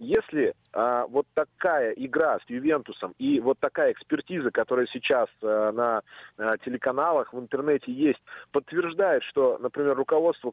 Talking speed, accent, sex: 125 wpm, native, male